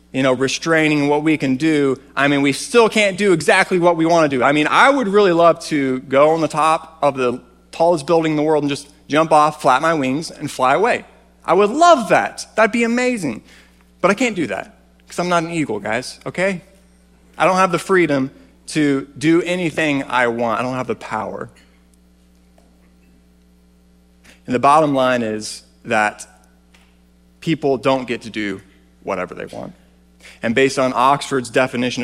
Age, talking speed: 30-49, 185 wpm